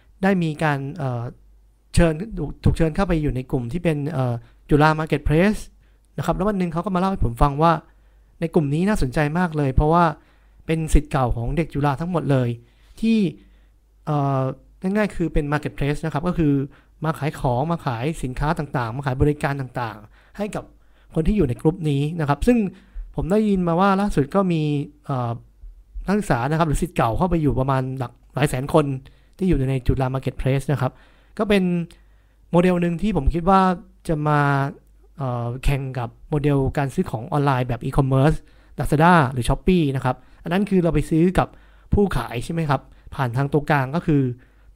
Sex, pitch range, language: male, 135-175 Hz, Thai